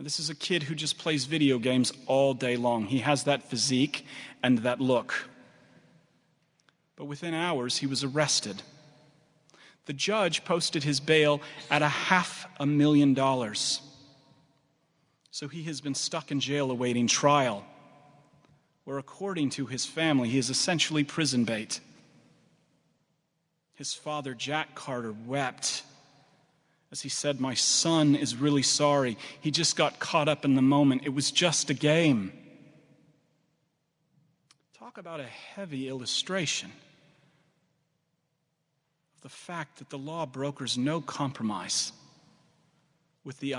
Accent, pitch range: American, 135-160 Hz